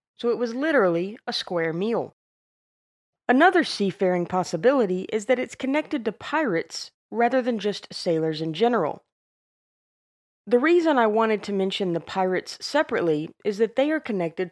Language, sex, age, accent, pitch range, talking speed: English, female, 30-49, American, 180-245 Hz, 150 wpm